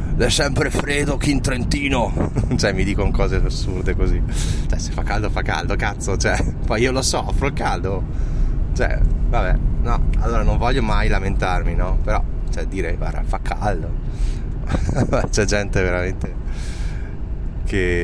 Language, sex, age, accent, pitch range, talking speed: Italian, male, 20-39, native, 80-100 Hz, 155 wpm